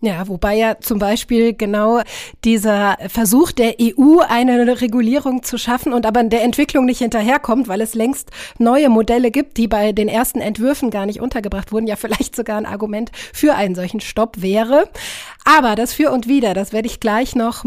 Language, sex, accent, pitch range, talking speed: German, female, German, 225-280 Hz, 185 wpm